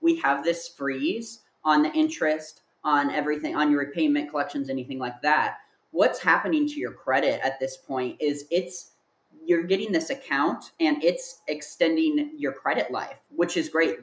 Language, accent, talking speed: English, American, 165 wpm